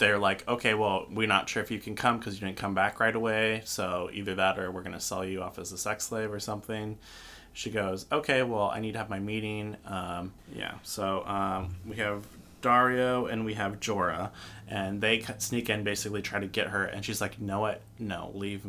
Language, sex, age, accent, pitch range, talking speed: English, male, 20-39, American, 95-110 Hz, 230 wpm